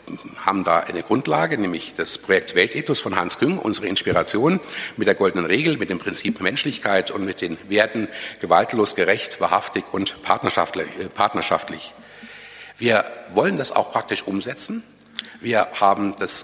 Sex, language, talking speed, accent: male, German, 140 wpm, German